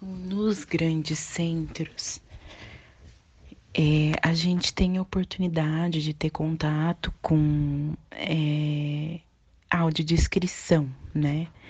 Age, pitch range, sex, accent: 30-49, 155-180 Hz, female, Brazilian